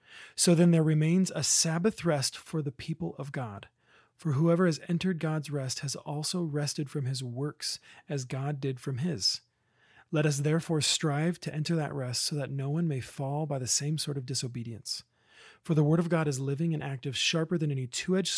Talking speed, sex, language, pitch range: 200 wpm, male, English, 135-160 Hz